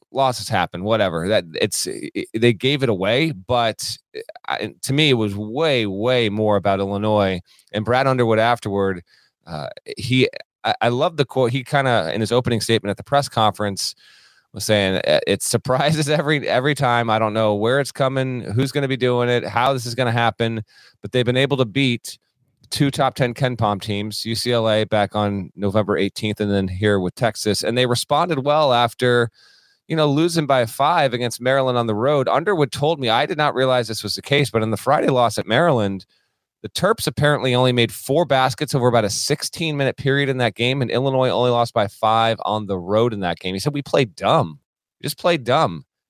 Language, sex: English, male